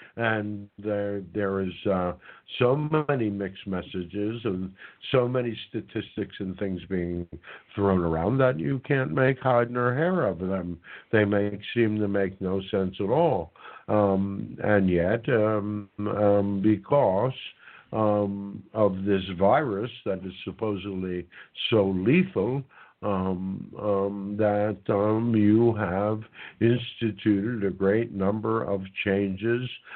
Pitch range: 95-110 Hz